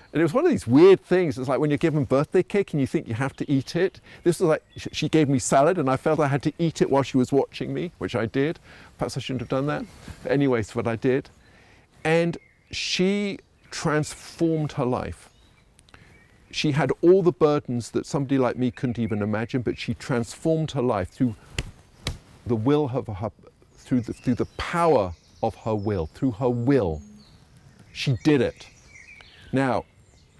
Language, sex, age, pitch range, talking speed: English, male, 50-69, 115-150 Hz, 195 wpm